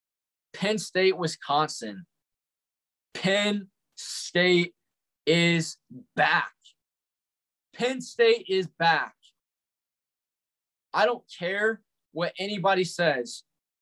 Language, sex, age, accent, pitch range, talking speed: English, male, 20-39, American, 150-190 Hz, 75 wpm